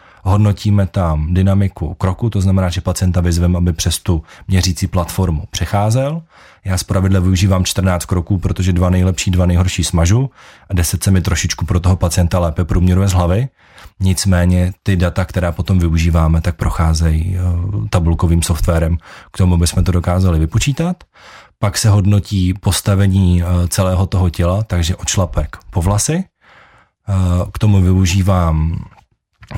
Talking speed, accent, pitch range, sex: 140 wpm, native, 90-100 Hz, male